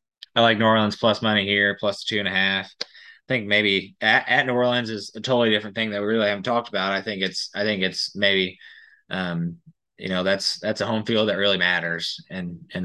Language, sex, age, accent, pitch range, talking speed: English, male, 20-39, American, 100-120 Hz, 240 wpm